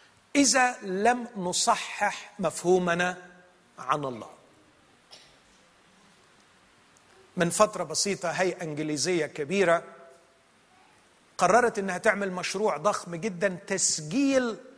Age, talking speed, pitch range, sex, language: 40-59, 75 wpm, 165-235 Hz, male, Arabic